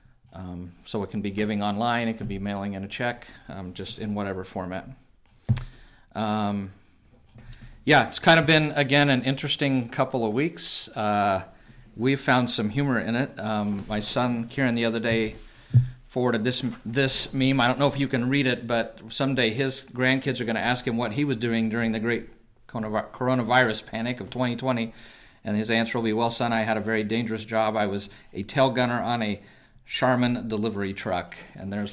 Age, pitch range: 40-59, 105-130 Hz